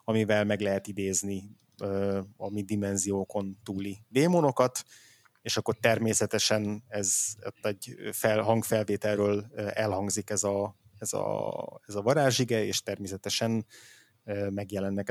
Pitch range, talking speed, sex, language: 105-115 Hz, 95 wpm, male, Hungarian